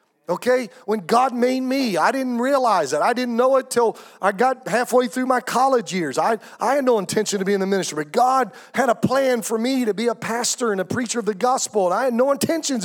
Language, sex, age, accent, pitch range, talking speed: English, male, 40-59, American, 200-255 Hz, 245 wpm